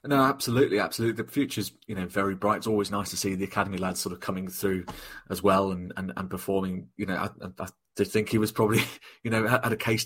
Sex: male